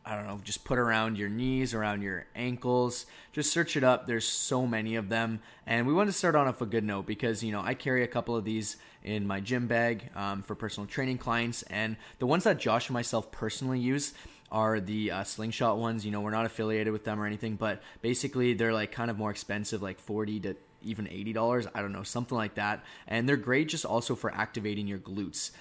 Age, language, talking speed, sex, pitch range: 20-39, English, 230 wpm, male, 105-125 Hz